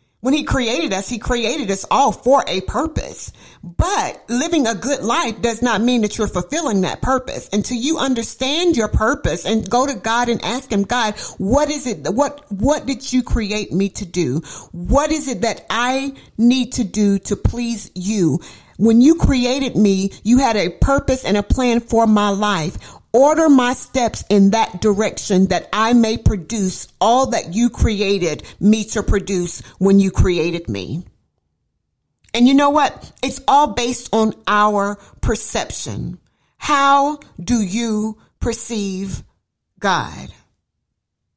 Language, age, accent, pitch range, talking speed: English, 50-69, American, 200-260 Hz, 160 wpm